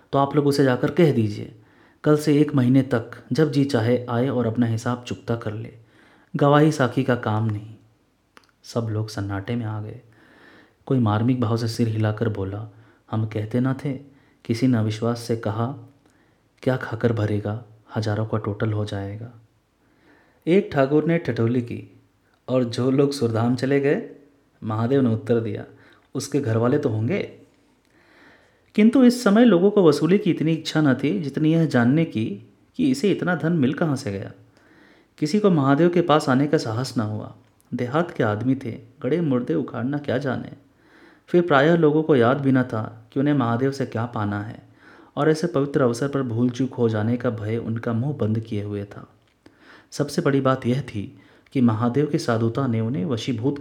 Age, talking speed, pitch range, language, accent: 30-49, 180 wpm, 110-140 Hz, Hindi, native